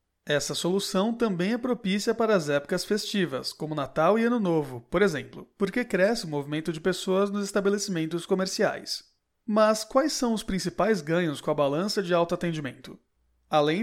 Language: Portuguese